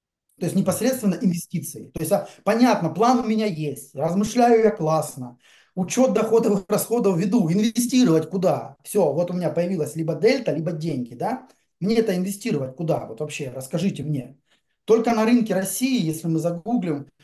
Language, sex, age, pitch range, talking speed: Russian, male, 20-39, 155-220 Hz, 160 wpm